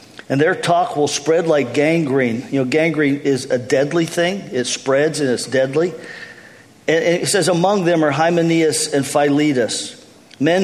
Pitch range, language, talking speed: 145-175 Hz, English, 165 wpm